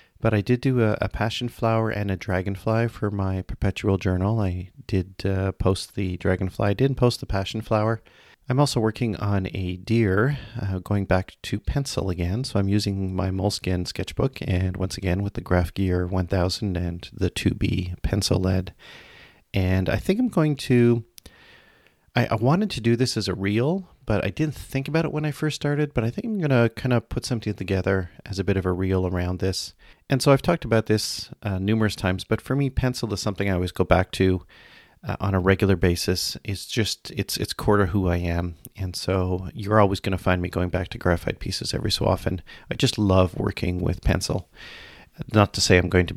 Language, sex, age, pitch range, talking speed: English, male, 30-49, 90-110 Hz, 210 wpm